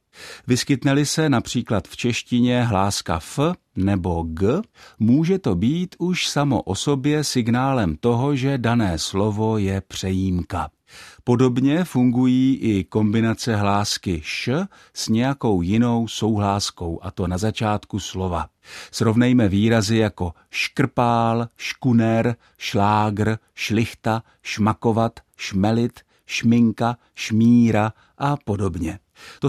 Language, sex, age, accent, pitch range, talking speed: Czech, male, 50-69, native, 95-130 Hz, 105 wpm